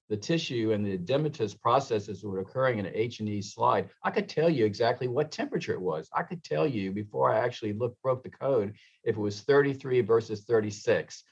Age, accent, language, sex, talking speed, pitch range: 50-69, American, English, male, 200 wpm, 105-130 Hz